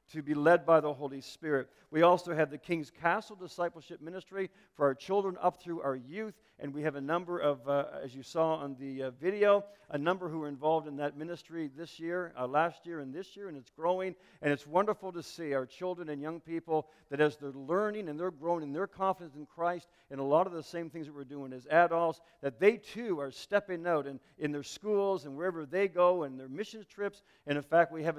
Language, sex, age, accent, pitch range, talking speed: English, male, 50-69, American, 140-180 Hz, 240 wpm